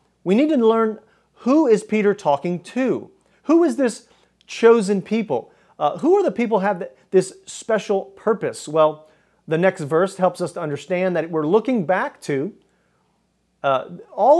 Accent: American